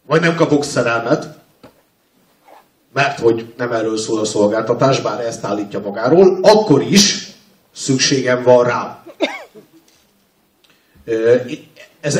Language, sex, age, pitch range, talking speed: Hungarian, male, 50-69, 115-165 Hz, 105 wpm